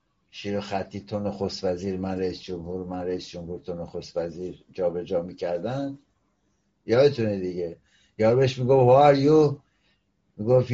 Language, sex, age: Persian, male, 60-79